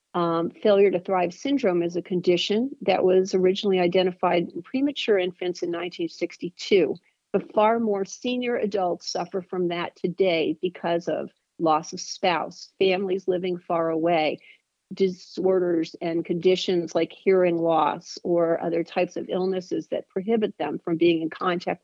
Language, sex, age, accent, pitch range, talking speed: English, female, 50-69, American, 175-195 Hz, 145 wpm